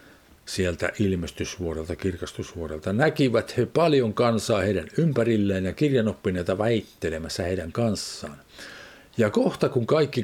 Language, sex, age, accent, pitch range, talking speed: Finnish, male, 50-69, native, 95-150 Hz, 105 wpm